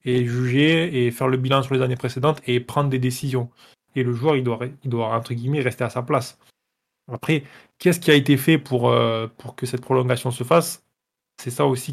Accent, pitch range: French, 125-140 Hz